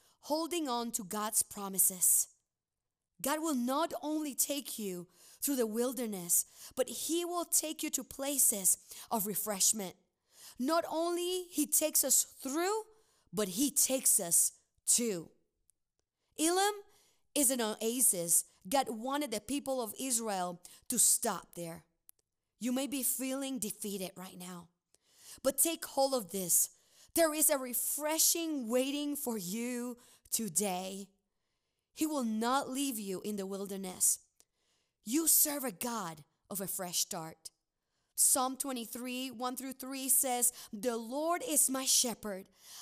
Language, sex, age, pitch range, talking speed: English, female, 20-39, 205-285 Hz, 130 wpm